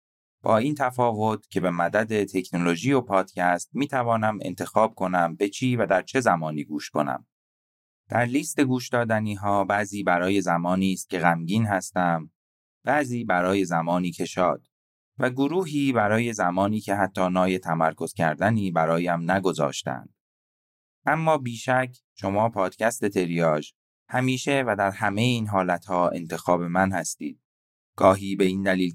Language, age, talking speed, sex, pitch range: Persian, 30-49, 135 wpm, male, 85-105 Hz